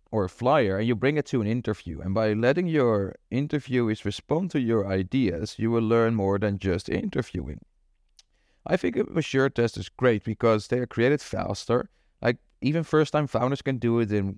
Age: 30-49